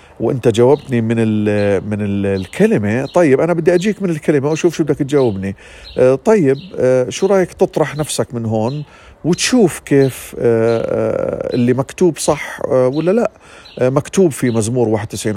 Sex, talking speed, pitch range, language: male, 135 wpm, 100-140 Hz, Arabic